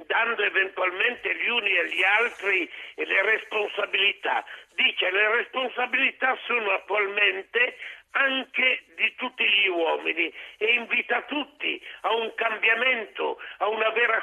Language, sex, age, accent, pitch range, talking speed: Italian, male, 60-79, native, 205-260 Hz, 120 wpm